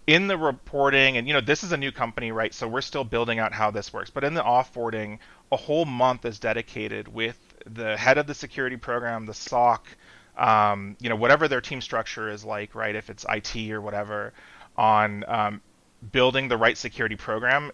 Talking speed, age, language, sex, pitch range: 205 wpm, 30-49, English, male, 110-130 Hz